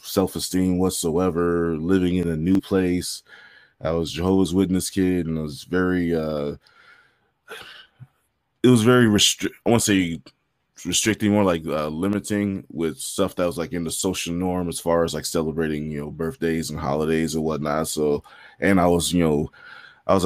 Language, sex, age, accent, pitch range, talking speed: English, male, 20-39, American, 80-95 Hz, 180 wpm